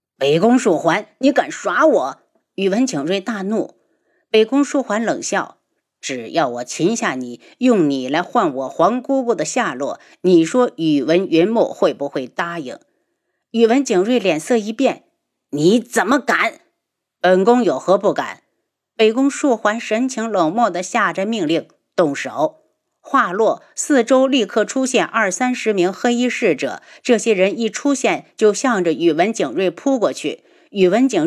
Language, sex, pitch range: Chinese, female, 180-250 Hz